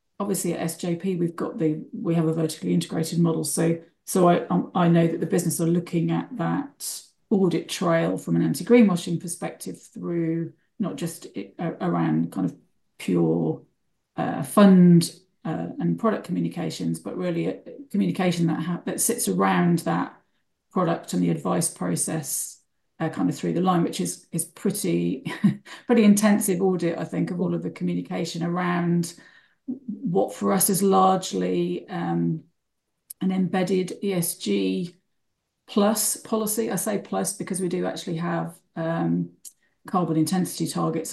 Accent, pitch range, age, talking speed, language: British, 160-195 Hz, 40-59, 155 wpm, English